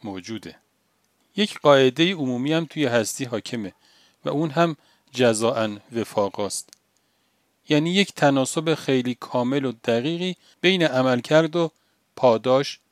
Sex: male